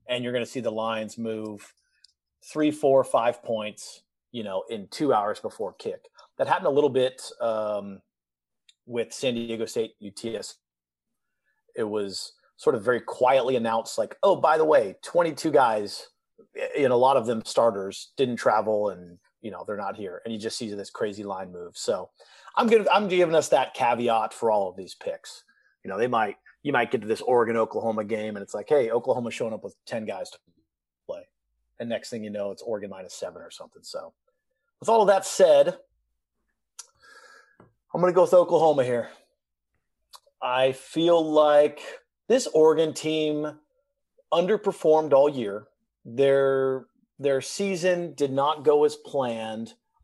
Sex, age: male, 30-49